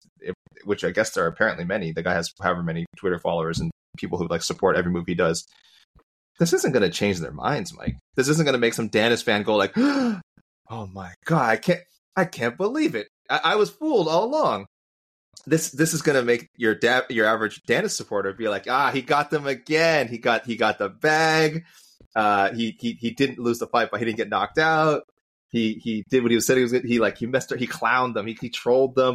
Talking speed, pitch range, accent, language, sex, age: 230 wpm, 105-155 Hz, American, English, male, 30-49